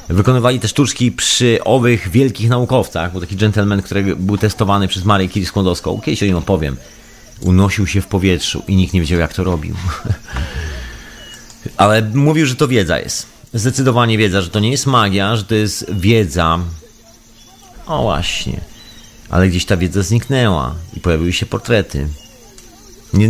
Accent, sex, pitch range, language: native, male, 90-115 Hz, Polish